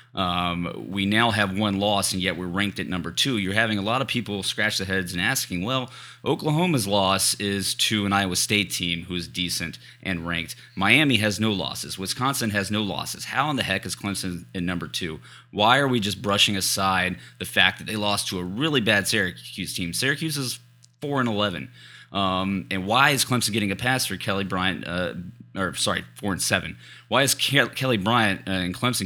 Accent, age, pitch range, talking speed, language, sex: American, 30-49, 95-125 Hz, 205 wpm, English, male